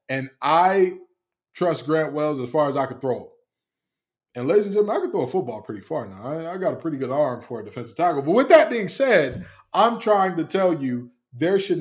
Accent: American